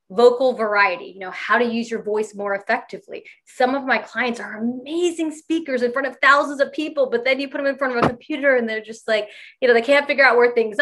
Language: English